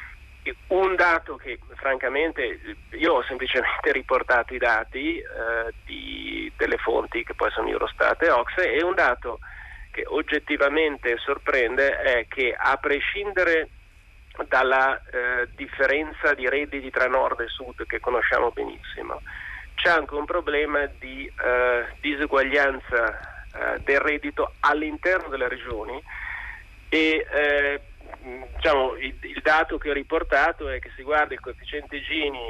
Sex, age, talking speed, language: male, 40-59, 130 wpm, Italian